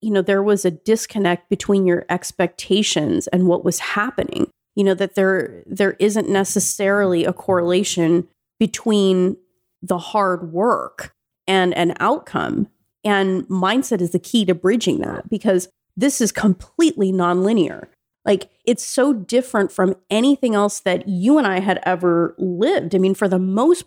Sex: female